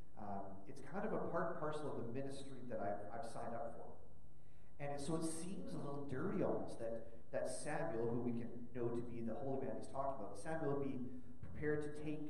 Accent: American